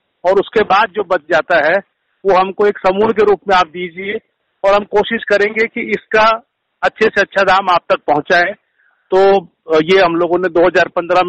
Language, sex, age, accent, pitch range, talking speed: Hindi, male, 50-69, native, 175-205 Hz, 185 wpm